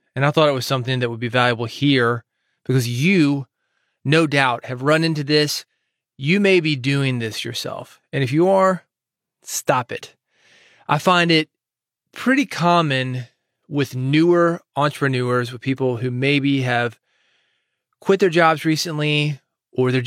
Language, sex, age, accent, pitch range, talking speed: English, male, 30-49, American, 130-160 Hz, 150 wpm